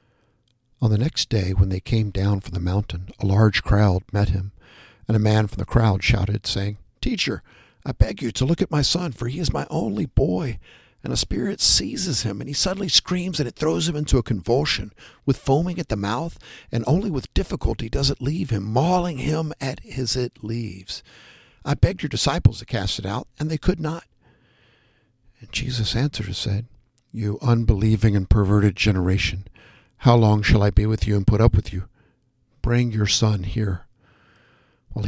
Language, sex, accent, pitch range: English, male, American, 105-125 Hz